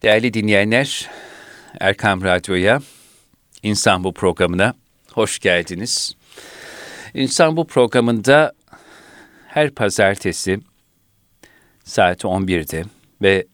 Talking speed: 65 wpm